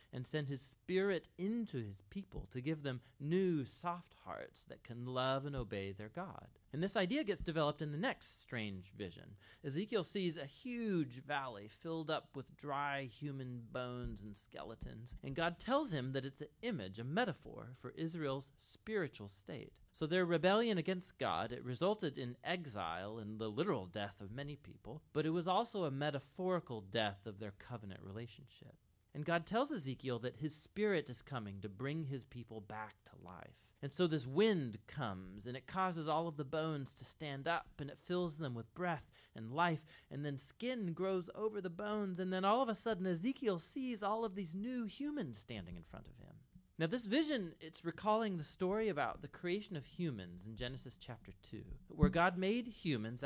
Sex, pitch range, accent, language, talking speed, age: male, 120-180 Hz, American, English, 190 wpm, 30-49